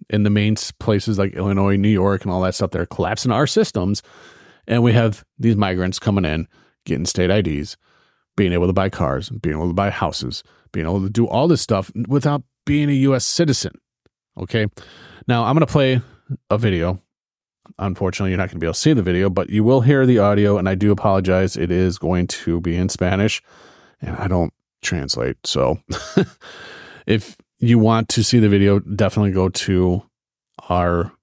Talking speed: 190 wpm